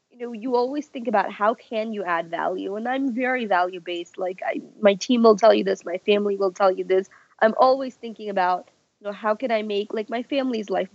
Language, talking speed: English, 235 wpm